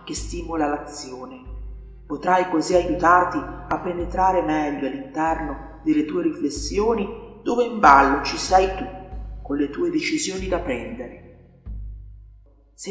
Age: 40-59